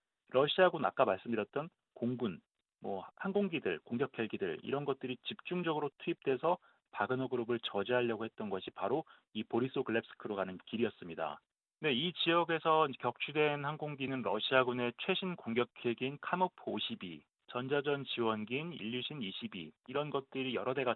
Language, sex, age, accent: Korean, male, 30-49, native